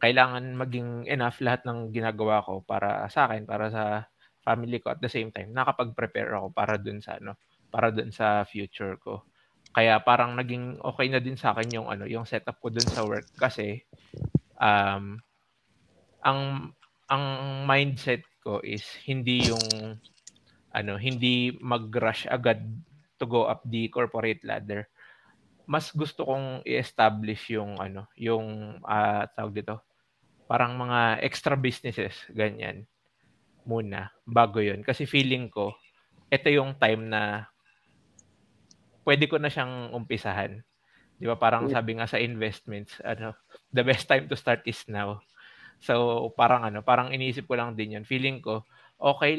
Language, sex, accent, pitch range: Filipino, male, native, 110-130 Hz